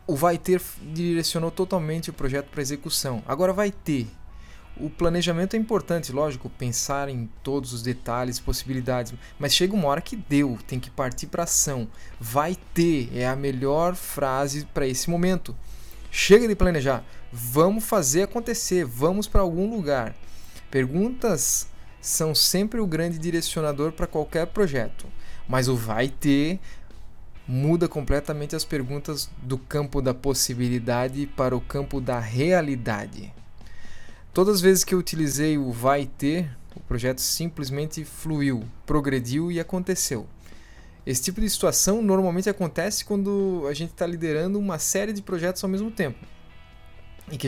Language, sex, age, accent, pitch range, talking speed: Portuguese, male, 20-39, Brazilian, 125-175 Hz, 145 wpm